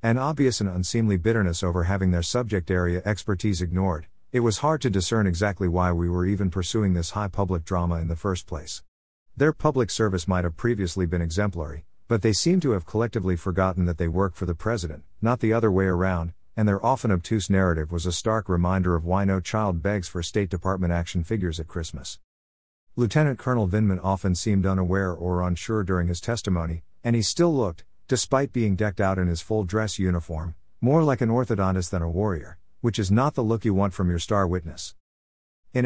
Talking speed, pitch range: 200 wpm, 90-110 Hz